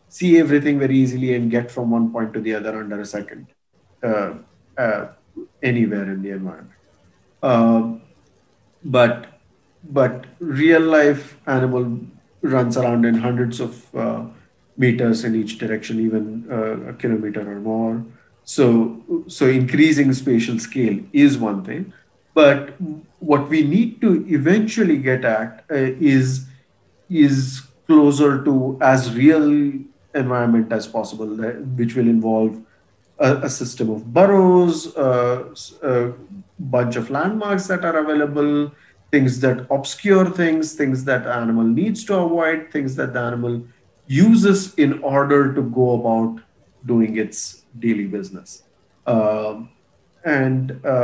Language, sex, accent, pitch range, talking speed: English, male, Indian, 115-145 Hz, 130 wpm